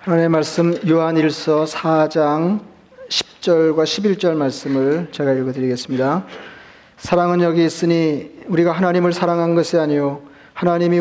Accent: native